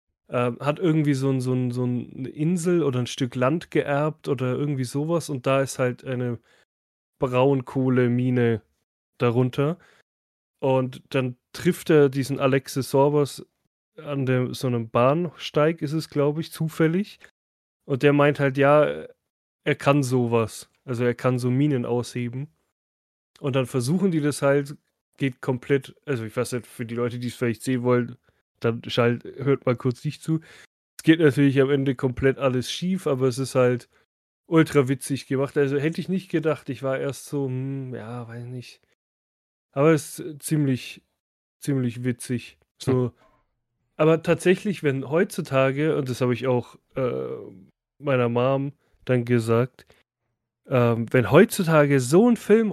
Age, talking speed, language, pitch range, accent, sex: 20-39, 155 wpm, German, 125-145 Hz, German, male